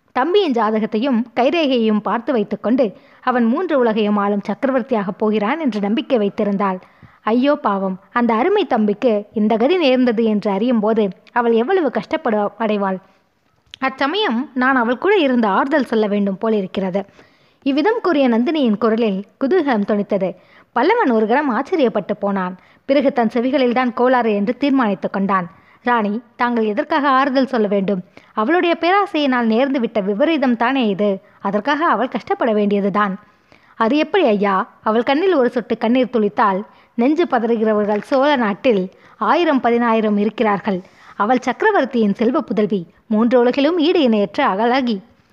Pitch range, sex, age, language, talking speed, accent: 210-265 Hz, female, 20-39, Tamil, 125 wpm, native